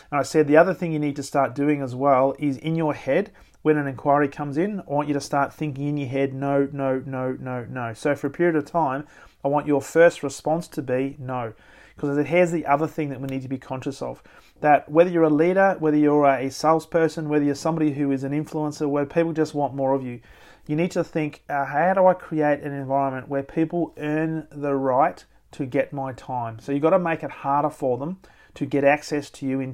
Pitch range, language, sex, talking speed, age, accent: 135-155 Hz, English, male, 240 wpm, 30-49, Australian